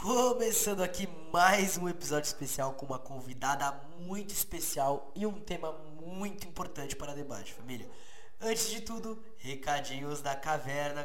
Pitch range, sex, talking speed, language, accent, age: 145-175 Hz, male, 135 wpm, Portuguese, Brazilian, 20-39